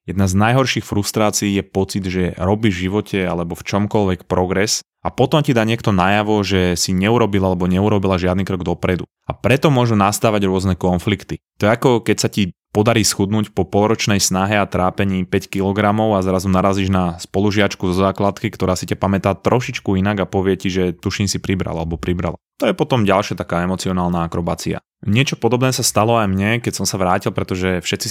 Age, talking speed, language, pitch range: 20-39, 190 wpm, Slovak, 95-110 Hz